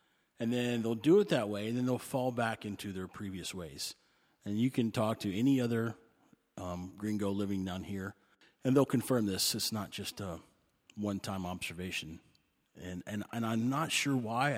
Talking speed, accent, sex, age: 185 wpm, American, male, 30-49